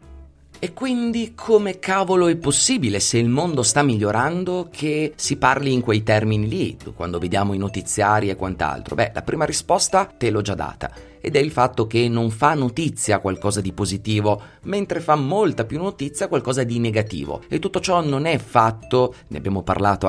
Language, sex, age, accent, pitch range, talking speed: Italian, male, 30-49, native, 100-145 Hz, 180 wpm